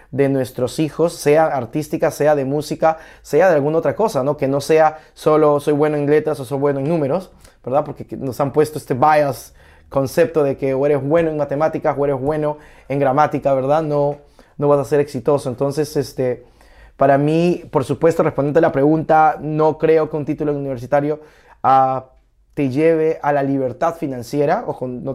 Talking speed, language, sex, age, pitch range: 190 wpm, Spanish, male, 20-39, 135-150 Hz